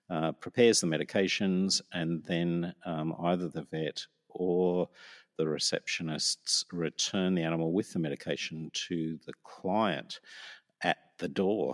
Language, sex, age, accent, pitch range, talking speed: English, male, 50-69, Australian, 85-110 Hz, 130 wpm